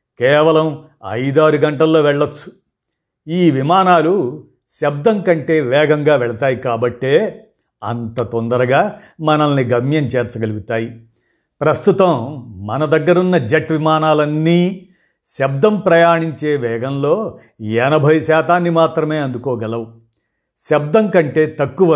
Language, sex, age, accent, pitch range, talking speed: Telugu, male, 50-69, native, 125-170 Hz, 85 wpm